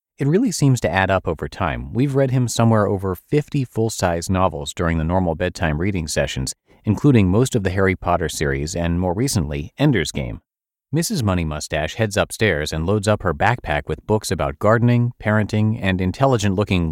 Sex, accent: male, American